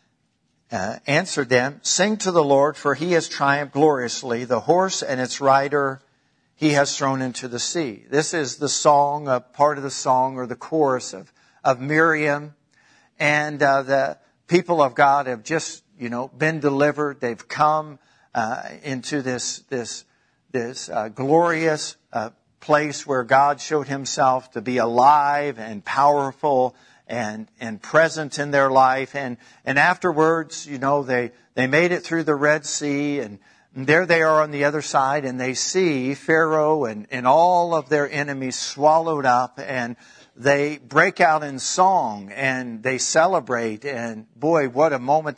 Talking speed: 165 wpm